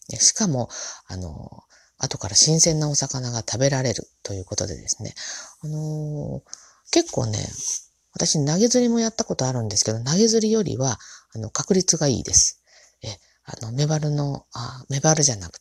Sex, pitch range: female, 110-180 Hz